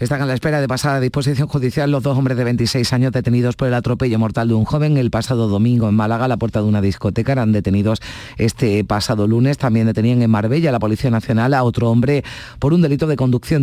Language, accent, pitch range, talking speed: Spanish, Spanish, 110-140 Hz, 240 wpm